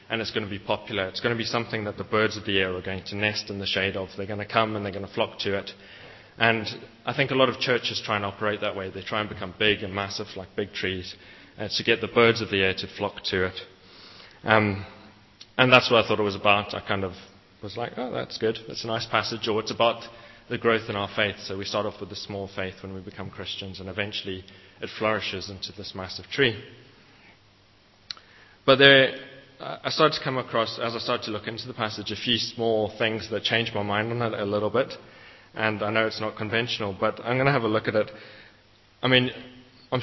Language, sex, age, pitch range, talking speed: English, male, 20-39, 100-115 Hz, 245 wpm